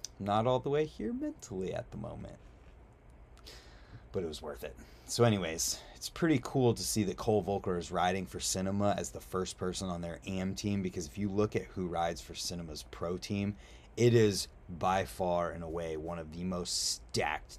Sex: male